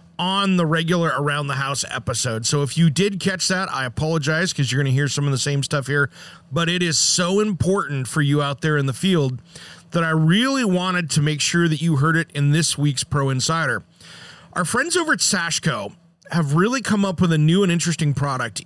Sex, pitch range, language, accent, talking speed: male, 150-190 Hz, English, American, 220 wpm